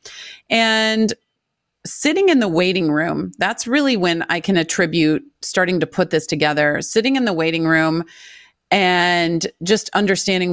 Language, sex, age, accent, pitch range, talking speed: English, female, 30-49, American, 165-195 Hz, 140 wpm